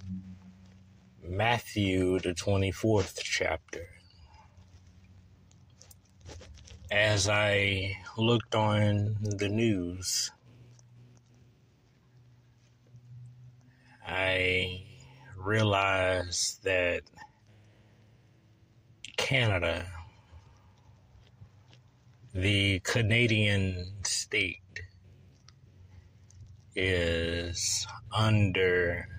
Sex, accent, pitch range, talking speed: male, American, 95-110 Hz, 40 wpm